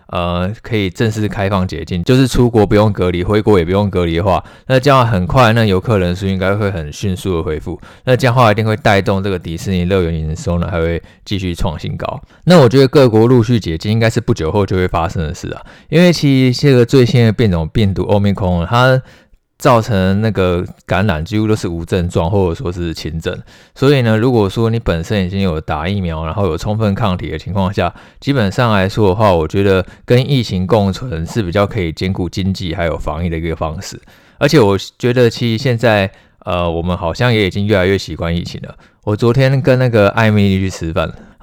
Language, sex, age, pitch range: Chinese, male, 20-39, 90-115 Hz